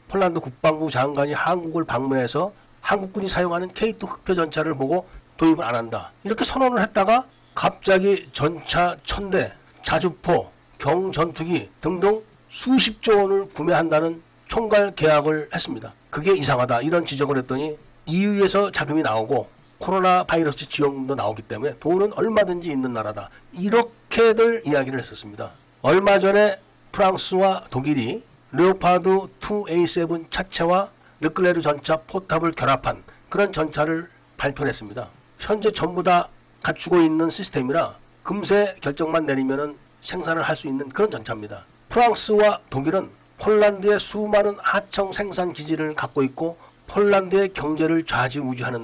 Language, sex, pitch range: Korean, male, 140-195 Hz